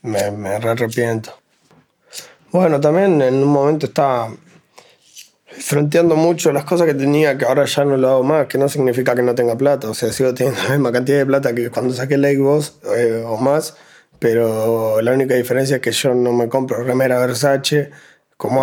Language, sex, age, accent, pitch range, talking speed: Spanish, male, 20-39, Argentinian, 125-145 Hz, 195 wpm